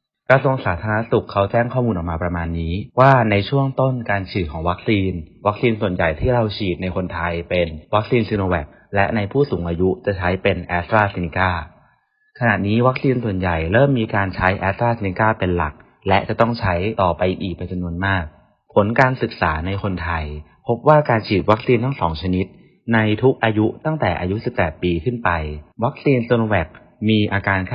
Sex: male